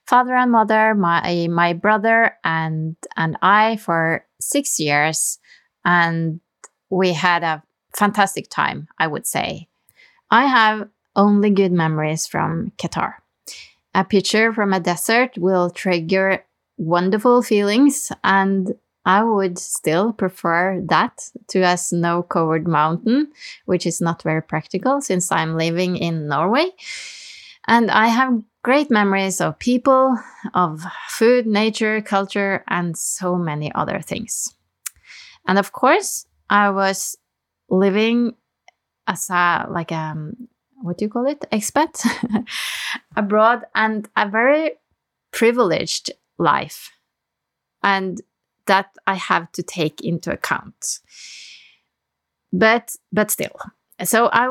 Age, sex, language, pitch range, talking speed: 20-39, female, English, 175-230 Hz, 120 wpm